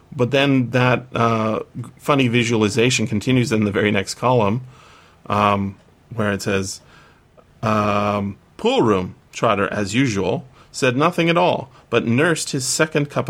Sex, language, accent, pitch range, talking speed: male, English, American, 100-125 Hz, 140 wpm